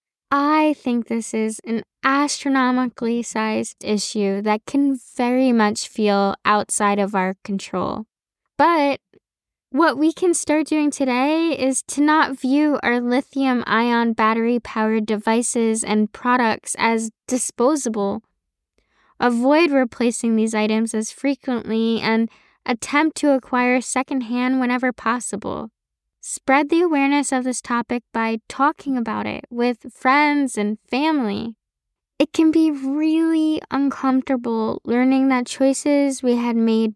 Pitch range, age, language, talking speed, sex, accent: 225-275 Hz, 10-29, English, 120 wpm, female, American